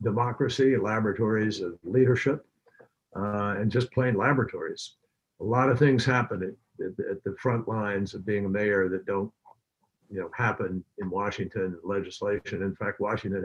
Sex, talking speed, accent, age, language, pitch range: male, 150 wpm, American, 60-79, English, 110-135 Hz